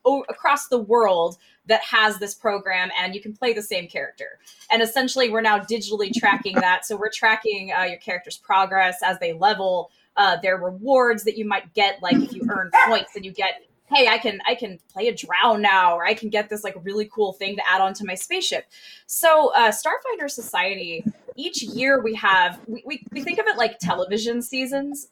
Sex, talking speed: female, 210 wpm